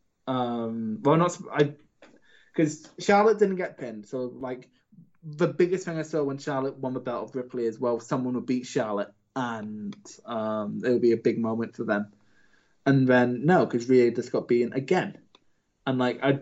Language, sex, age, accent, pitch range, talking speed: English, male, 20-39, British, 120-140 Hz, 185 wpm